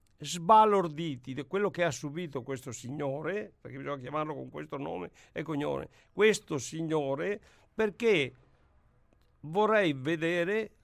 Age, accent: 60-79, native